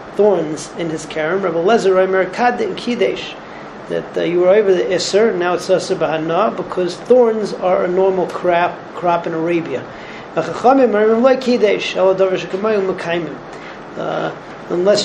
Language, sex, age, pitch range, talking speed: English, male, 40-59, 170-200 Hz, 95 wpm